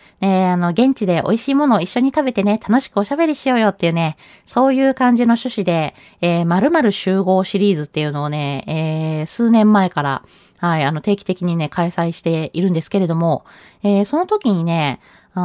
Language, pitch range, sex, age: Japanese, 170-260 Hz, female, 20-39